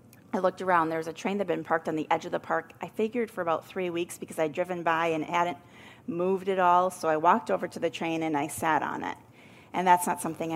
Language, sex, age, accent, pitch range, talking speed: English, female, 30-49, American, 155-180 Hz, 275 wpm